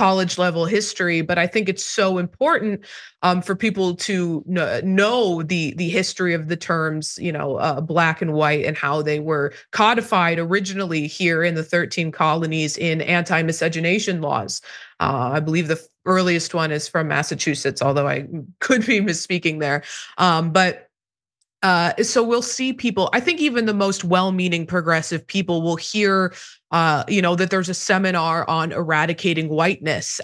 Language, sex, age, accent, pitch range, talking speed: English, female, 20-39, American, 160-190 Hz, 165 wpm